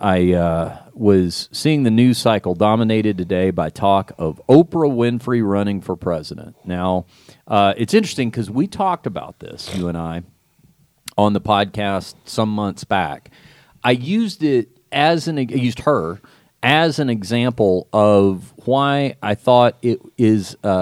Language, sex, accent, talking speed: English, male, American, 145 wpm